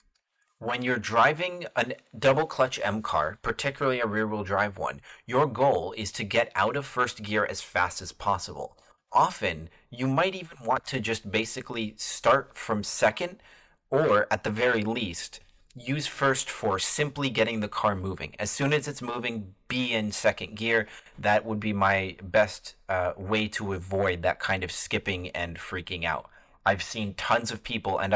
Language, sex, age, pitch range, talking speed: English, male, 30-49, 95-115 Hz, 175 wpm